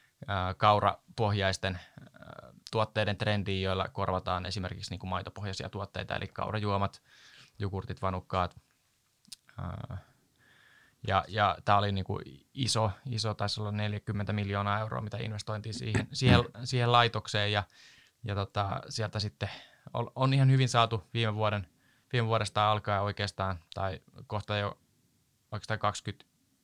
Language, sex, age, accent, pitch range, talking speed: Finnish, male, 20-39, native, 100-115 Hz, 115 wpm